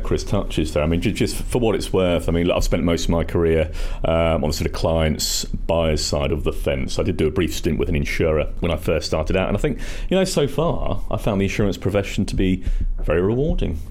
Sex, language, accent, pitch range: male, English, British, 90-120 Hz